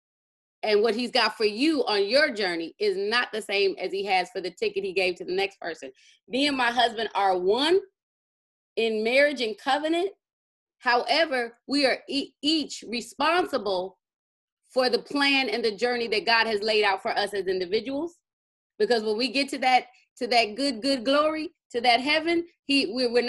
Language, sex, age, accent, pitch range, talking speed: English, female, 30-49, American, 200-310 Hz, 185 wpm